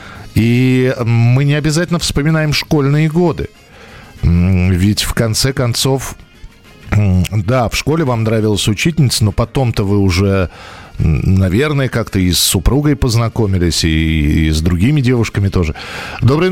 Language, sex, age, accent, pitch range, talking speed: Russian, male, 40-59, native, 100-135 Hz, 120 wpm